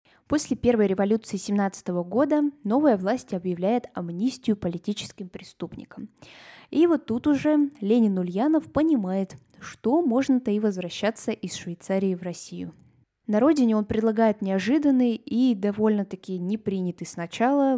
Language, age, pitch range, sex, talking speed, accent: Russian, 10-29, 180-230 Hz, female, 120 wpm, native